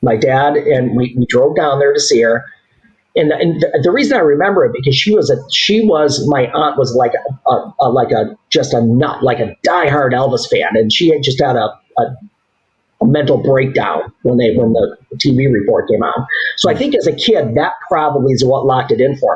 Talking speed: 225 wpm